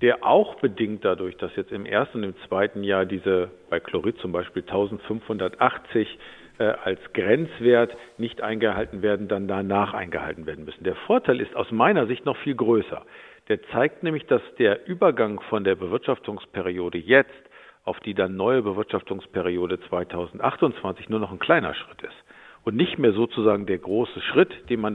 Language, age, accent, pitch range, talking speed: German, 50-69, German, 100-130 Hz, 165 wpm